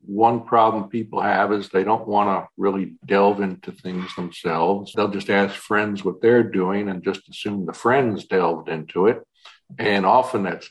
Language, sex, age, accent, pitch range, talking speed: English, male, 60-79, American, 95-115 Hz, 180 wpm